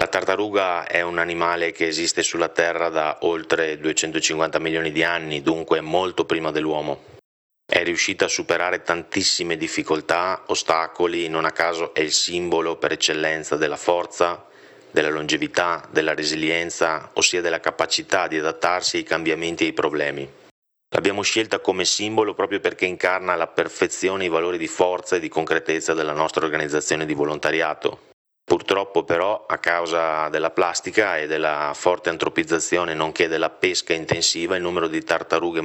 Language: Italian